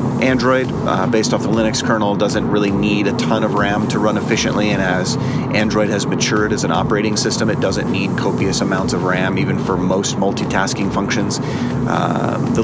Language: English